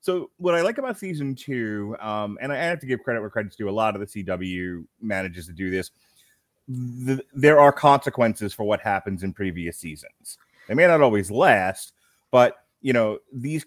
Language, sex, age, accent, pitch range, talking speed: English, male, 30-49, American, 95-125 Hz, 195 wpm